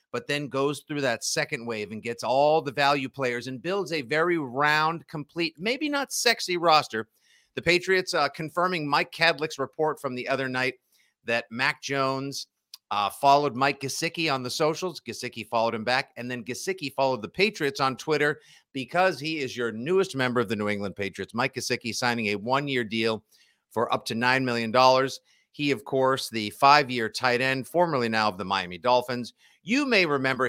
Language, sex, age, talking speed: English, male, 50-69, 185 wpm